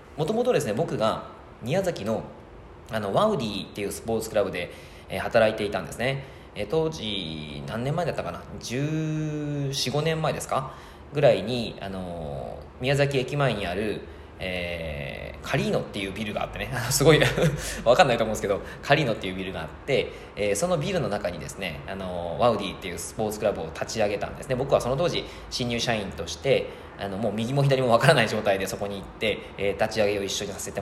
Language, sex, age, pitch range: Japanese, male, 20-39, 95-145 Hz